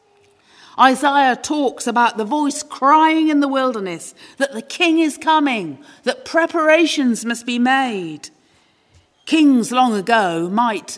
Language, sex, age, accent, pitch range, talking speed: English, female, 40-59, British, 210-300 Hz, 125 wpm